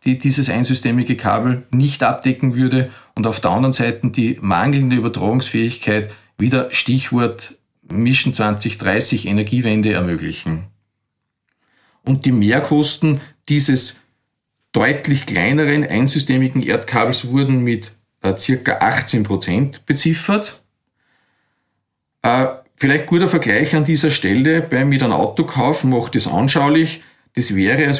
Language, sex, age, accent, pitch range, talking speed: German, male, 40-59, Austrian, 115-155 Hz, 110 wpm